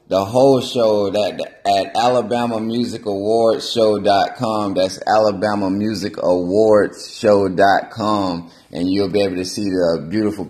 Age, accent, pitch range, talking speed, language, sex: 20-39, American, 95-110 Hz, 110 wpm, English, male